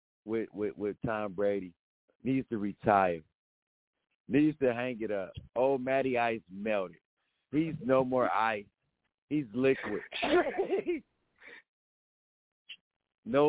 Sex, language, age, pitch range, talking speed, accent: male, English, 50-69, 105-135 Hz, 105 wpm, American